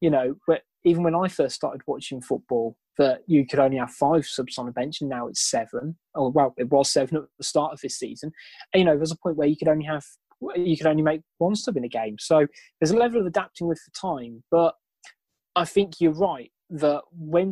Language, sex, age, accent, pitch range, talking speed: English, male, 20-39, British, 150-185 Hz, 245 wpm